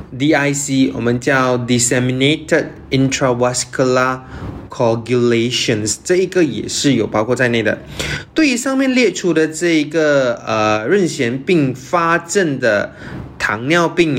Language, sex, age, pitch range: Chinese, male, 20-39, 120-155 Hz